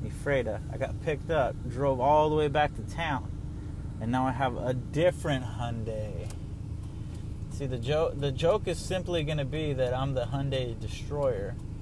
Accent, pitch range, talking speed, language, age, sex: American, 85-130 Hz, 160 wpm, English, 30-49, male